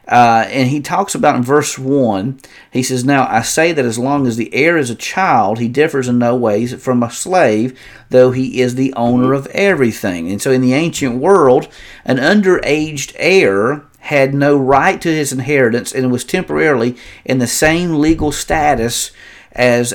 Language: English